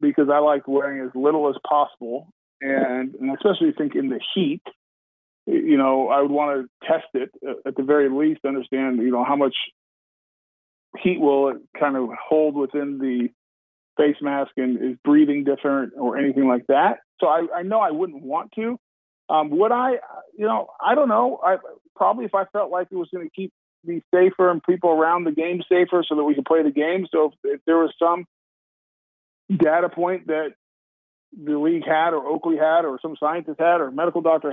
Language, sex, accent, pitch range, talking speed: English, male, American, 140-180 Hz, 200 wpm